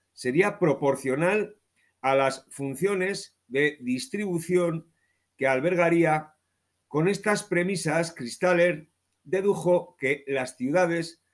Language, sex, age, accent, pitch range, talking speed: Spanish, male, 50-69, Spanish, 130-180 Hz, 90 wpm